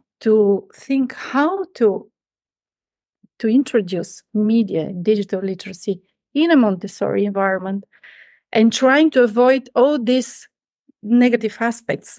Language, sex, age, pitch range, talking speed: Swedish, female, 30-49, 195-245 Hz, 105 wpm